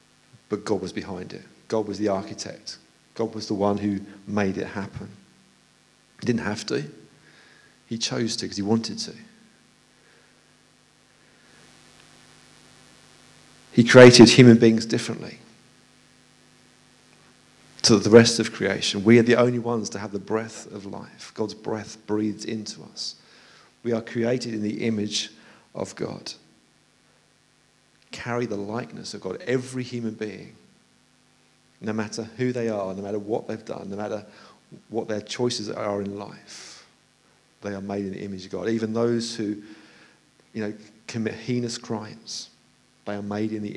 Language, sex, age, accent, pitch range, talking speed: English, male, 50-69, British, 105-120 Hz, 150 wpm